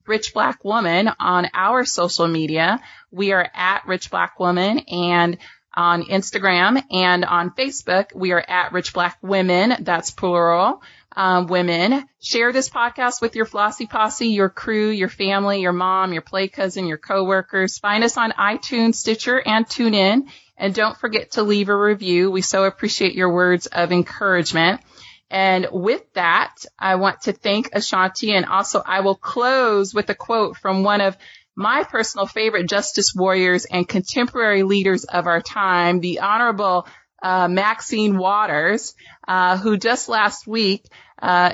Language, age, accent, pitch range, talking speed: English, 30-49, American, 180-215 Hz, 160 wpm